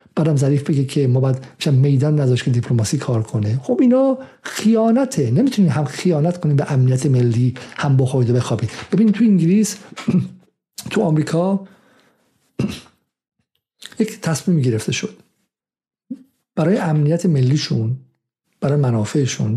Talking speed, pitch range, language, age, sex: 125 wpm, 125-165 Hz, Persian, 50-69, male